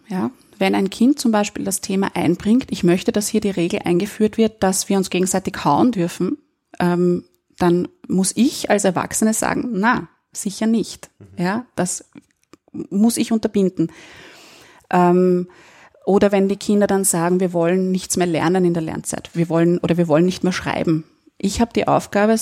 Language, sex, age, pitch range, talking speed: German, female, 30-49, 175-210 Hz, 170 wpm